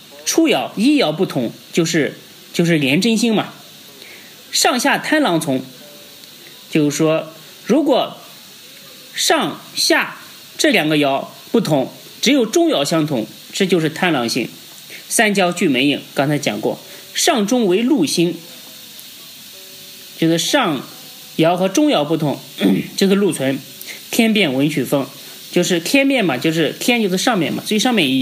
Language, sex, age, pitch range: Chinese, male, 30-49, 160-230 Hz